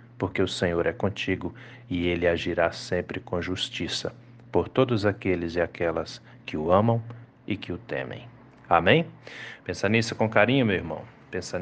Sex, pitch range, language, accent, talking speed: male, 85-110 Hz, Portuguese, Brazilian, 160 wpm